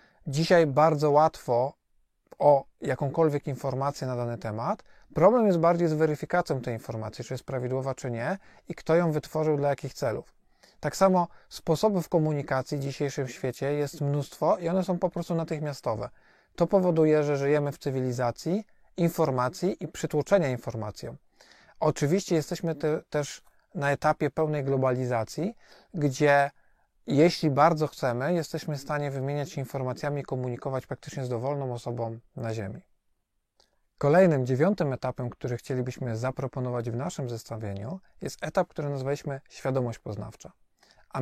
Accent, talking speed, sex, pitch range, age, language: native, 135 wpm, male, 130-160 Hz, 40-59, Polish